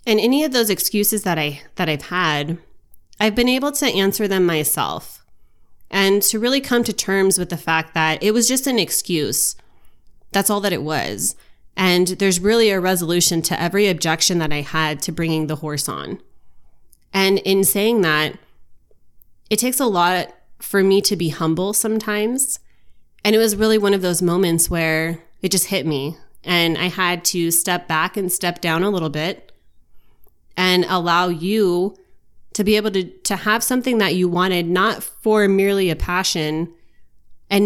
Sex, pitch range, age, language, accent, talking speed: female, 165-210 Hz, 20-39, English, American, 175 wpm